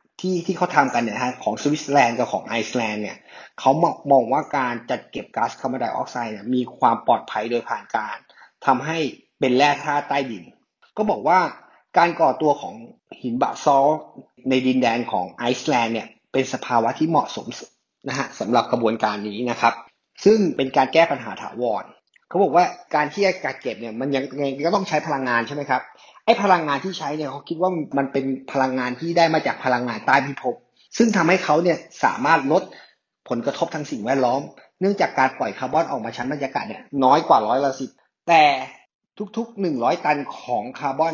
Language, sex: English, male